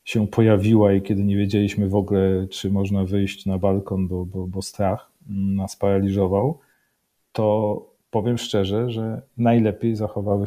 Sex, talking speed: male, 145 wpm